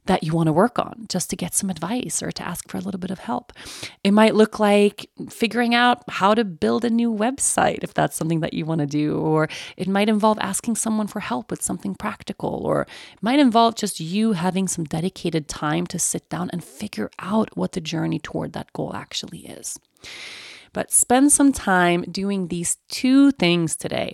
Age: 30-49